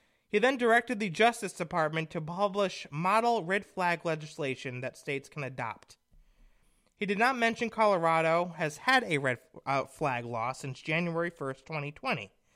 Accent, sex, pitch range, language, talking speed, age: American, male, 150-225 Hz, English, 150 wpm, 30-49